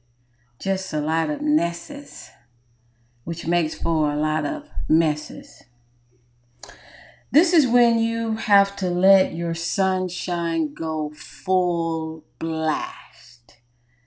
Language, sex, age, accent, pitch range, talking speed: English, female, 40-59, American, 150-195 Hz, 100 wpm